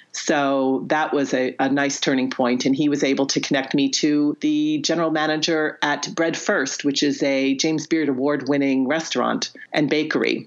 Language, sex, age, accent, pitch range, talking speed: English, female, 40-59, American, 140-165 Hz, 180 wpm